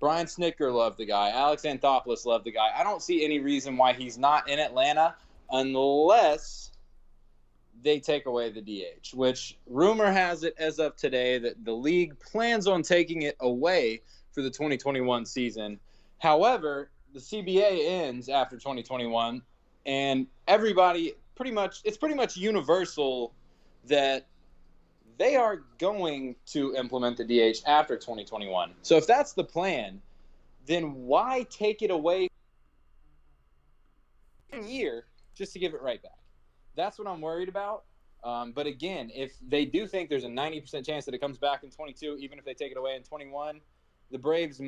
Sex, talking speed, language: male, 160 wpm, English